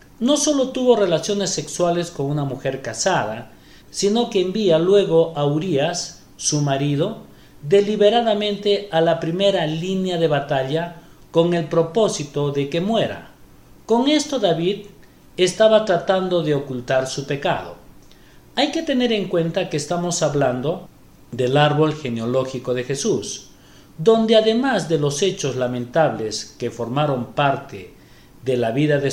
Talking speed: 135 wpm